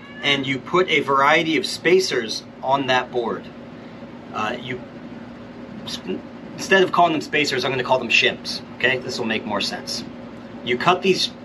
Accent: American